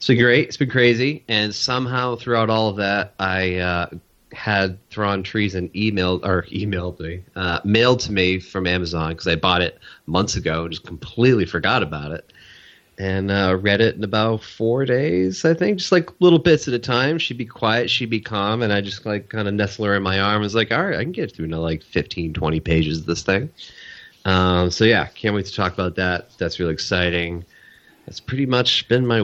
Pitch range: 90-115 Hz